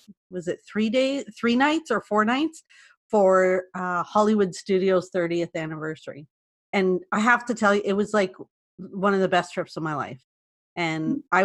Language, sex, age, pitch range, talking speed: English, female, 30-49, 180-220 Hz, 180 wpm